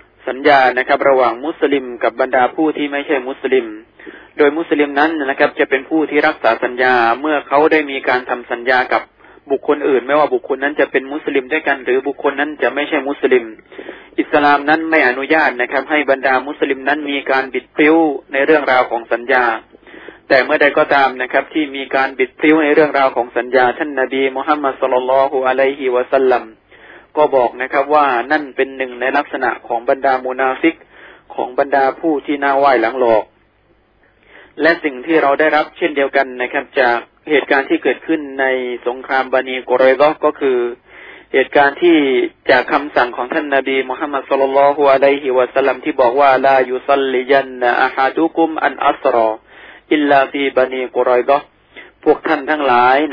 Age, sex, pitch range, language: 20-39, male, 130-150 Hz, Thai